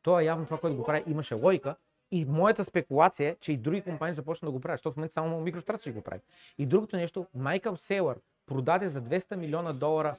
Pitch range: 140-180 Hz